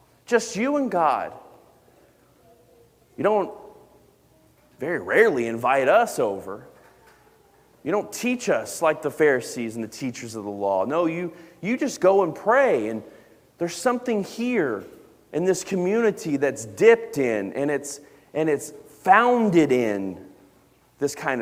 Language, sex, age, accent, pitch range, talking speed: English, male, 30-49, American, 125-195 Hz, 135 wpm